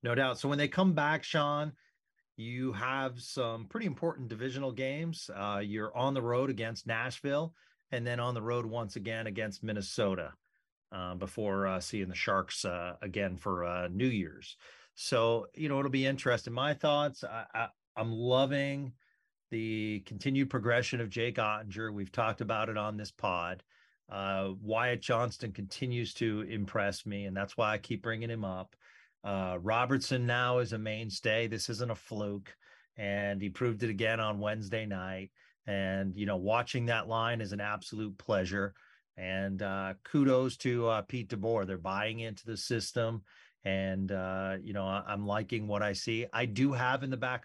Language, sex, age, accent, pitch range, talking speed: English, male, 40-59, American, 100-125 Hz, 175 wpm